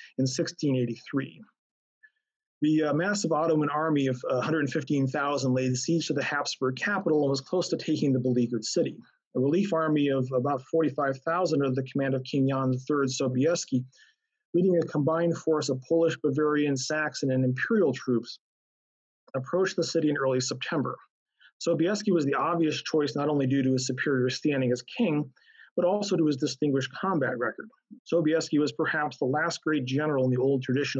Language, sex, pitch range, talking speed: English, male, 135-165 Hz, 165 wpm